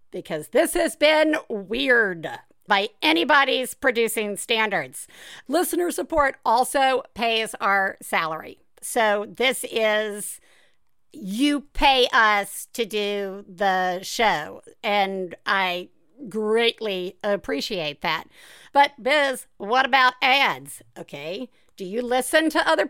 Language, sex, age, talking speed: English, female, 50-69, 105 wpm